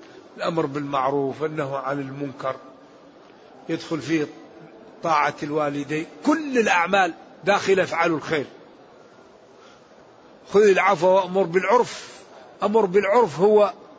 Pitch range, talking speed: 165-200 Hz, 90 wpm